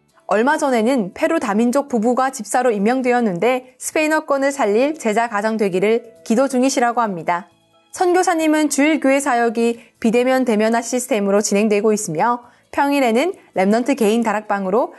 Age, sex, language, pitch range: 20-39, female, Korean, 220-300 Hz